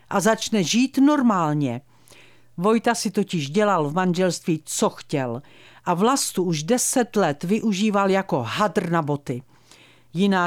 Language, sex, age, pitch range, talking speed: Czech, female, 50-69, 165-245 Hz, 130 wpm